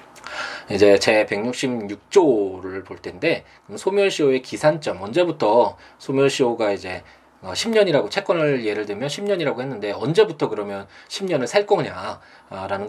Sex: male